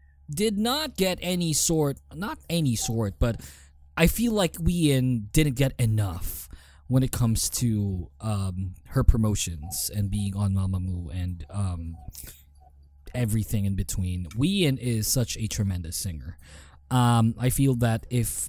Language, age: English, 20-39